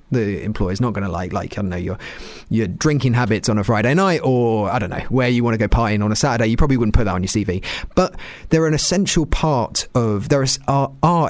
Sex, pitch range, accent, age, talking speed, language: male, 105-140 Hz, British, 30-49, 265 wpm, English